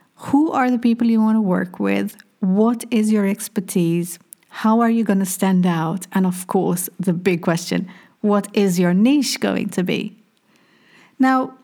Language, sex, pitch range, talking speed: English, female, 185-230 Hz, 175 wpm